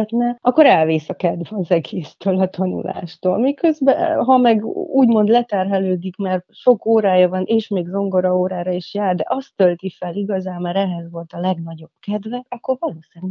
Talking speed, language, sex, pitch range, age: 165 wpm, Hungarian, female, 175-210 Hz, 30-49